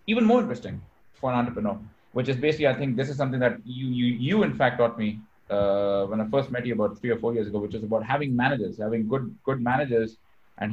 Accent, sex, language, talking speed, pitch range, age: Indian, male, English, 245 wpm, 110-135 Hz, 20-39